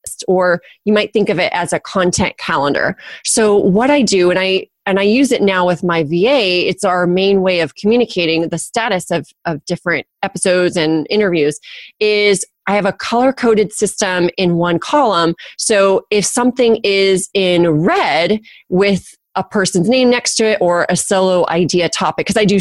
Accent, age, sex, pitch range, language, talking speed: American, 30-49, female, 180-215 Hz, English, 185 wpm